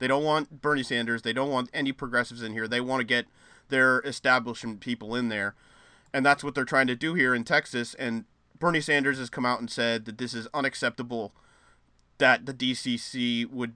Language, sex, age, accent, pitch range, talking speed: English, male, 30-49, American, 125-160 Hz, 205 wpm